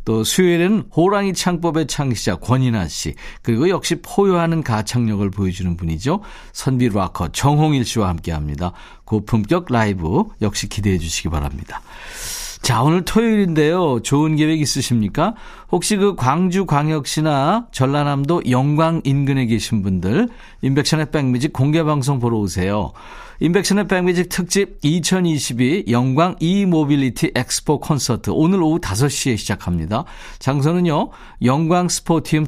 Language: Korean